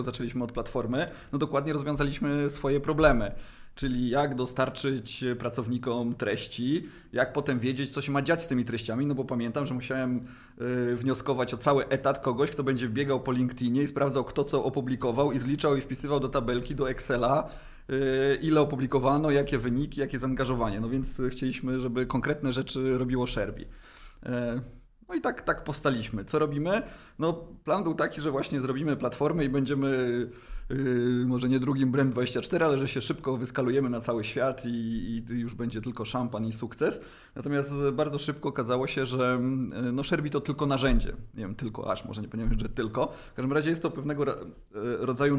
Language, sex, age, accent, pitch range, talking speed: Polish, male, 30-49, native, 125-140 Hz, 175 wpm